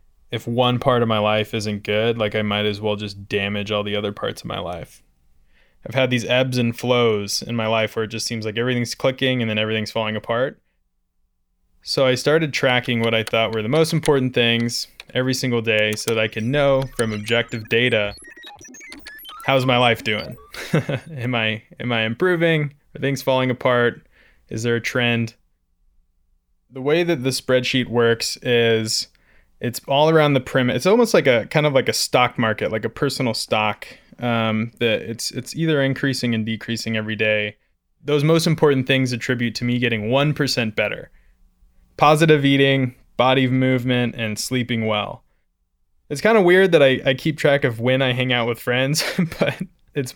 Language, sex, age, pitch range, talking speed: English, male, 20-39, 110-135 Hz, 185 wpm